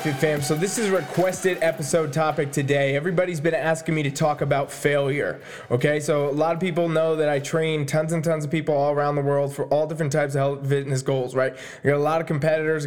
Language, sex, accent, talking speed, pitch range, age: English, male, American, 240 wpm, 145-180 Hz, 20-39